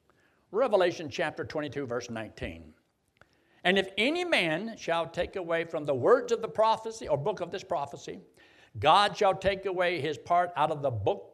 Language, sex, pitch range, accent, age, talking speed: English, male, 150-215 Hz, American, 60-79, 175 wpm